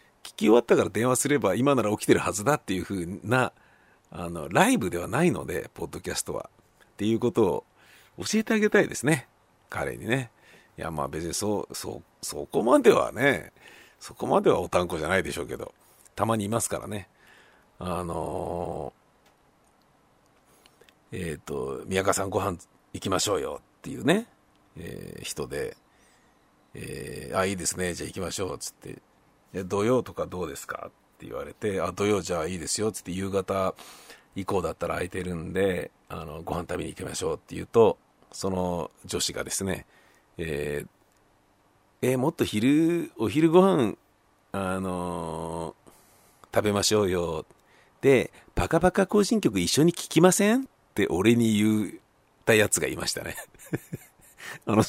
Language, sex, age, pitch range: Japanese, male, 50-69, 90-140 Hz